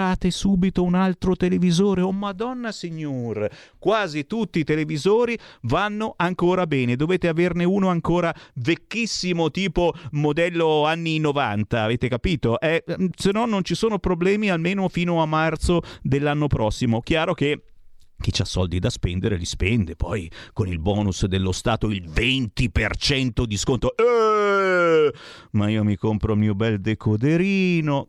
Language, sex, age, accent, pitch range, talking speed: Italian, male, 30-49, native, 120-185 Hz, 140 wpm